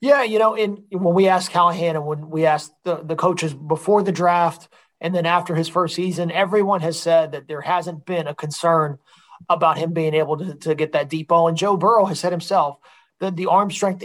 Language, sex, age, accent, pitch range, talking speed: English, male, 30-49, American, 160-185 Hz, 225 wpm